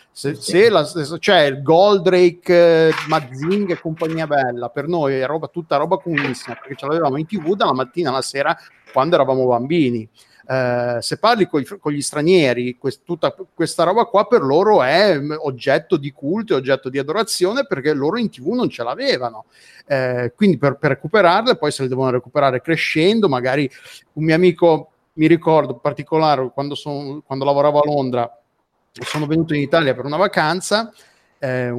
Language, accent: Italian, native